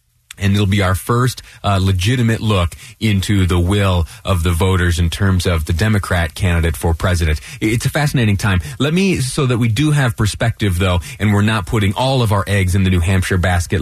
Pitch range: 95-120 Hz